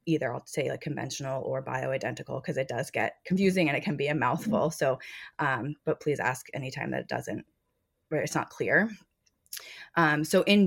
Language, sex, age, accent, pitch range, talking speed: English, female, 20-39, American, 140-170 Hz, 190 wpm